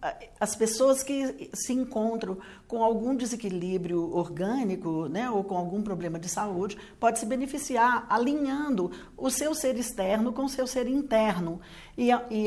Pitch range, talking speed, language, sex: 190-245 Hz, 145 wpm, Portuguese, female